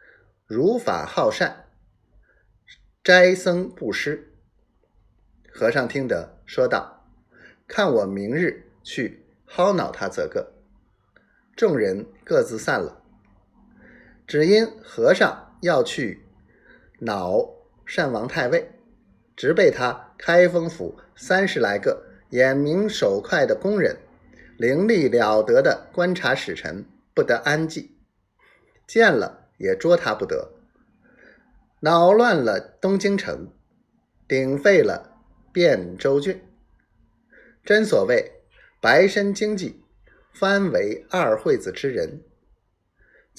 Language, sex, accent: Chinese, male, native